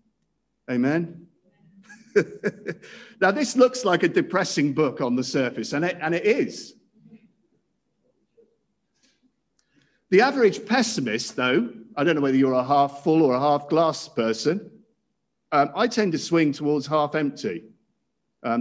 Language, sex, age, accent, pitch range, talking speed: English, male, 50-69, British, 140-220 Hz, 135 wpm